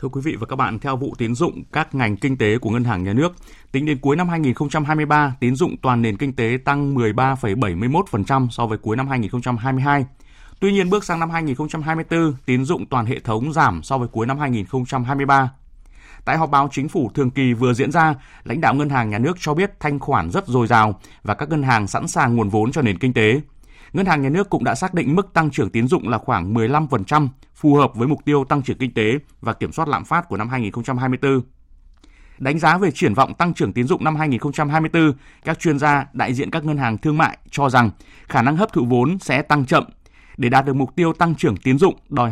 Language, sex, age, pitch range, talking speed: Vietnamese, male, 20-39, 120-150 Hz, 230 wpm